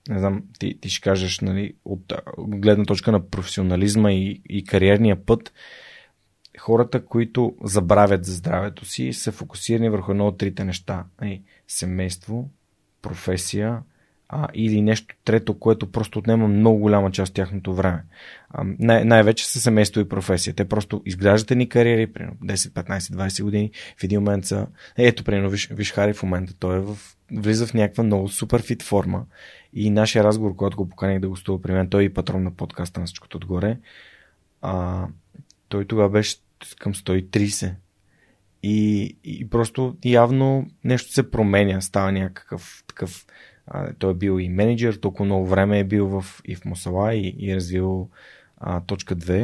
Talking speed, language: 165 wpm, Bulgarian